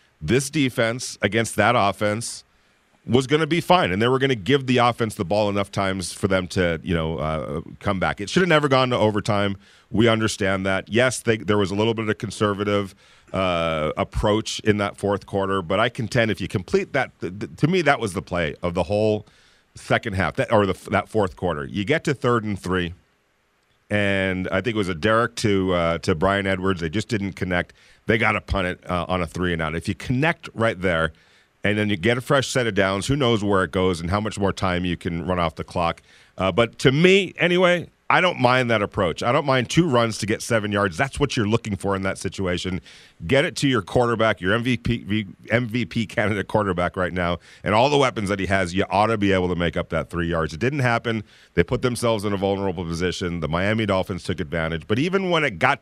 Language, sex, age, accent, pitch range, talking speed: English, male, 40-59, American, 95-120 Hz, 235 wpm